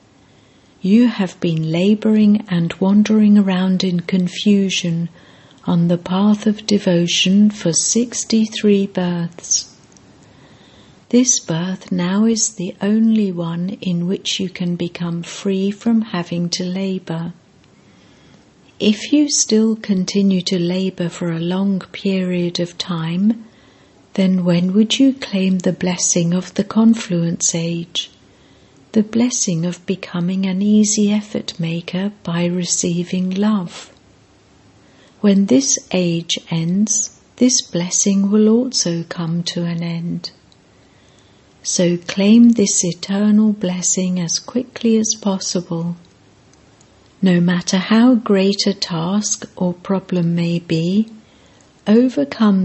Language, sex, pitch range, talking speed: English, female, 175-210 Hz, 115 wpm